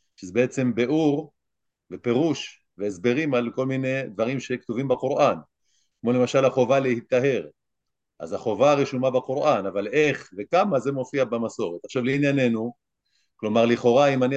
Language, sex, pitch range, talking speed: Hebrew, male, 115-150 Hz, 130 wpm